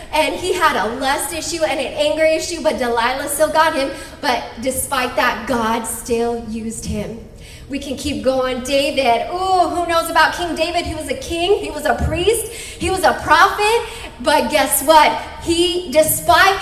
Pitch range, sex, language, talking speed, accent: 275-355 Hz, female, English, 180 wpm, American